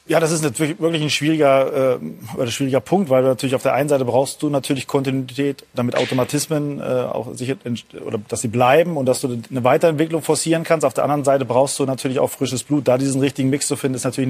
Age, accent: 30-49, German